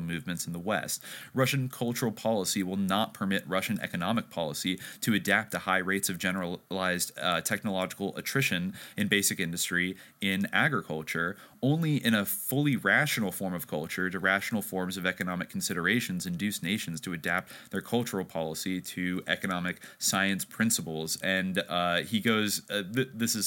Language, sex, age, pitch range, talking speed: English, male, 30-49, 95-125 Hz, 155 wpm